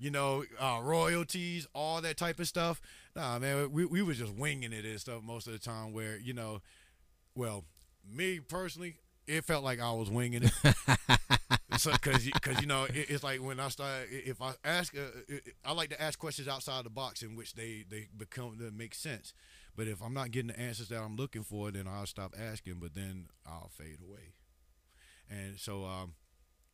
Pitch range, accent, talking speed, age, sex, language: 95-130 Hz, American, 205 wpm, 30-49, male, English